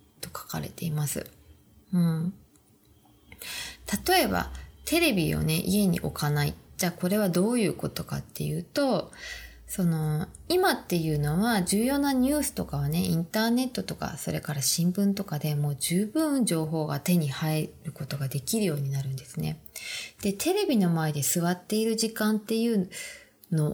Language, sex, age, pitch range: Japanese, female, 20-39, 150-215 Hz